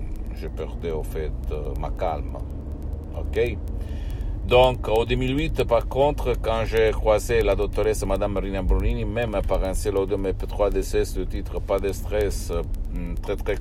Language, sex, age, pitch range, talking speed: Italian, male, 60-79, 75-95 Hz, 165 wpm